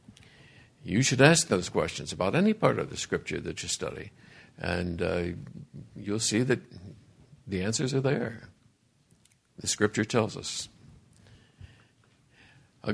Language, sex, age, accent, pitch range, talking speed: English, male, 60-79, American, 95-130 Hz, 130 wpm